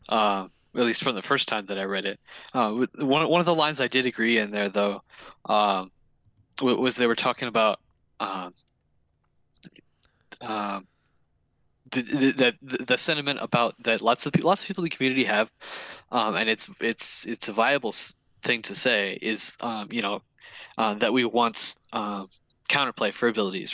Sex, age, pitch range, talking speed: male, 10-29, 110-130 Hz, 185 wpm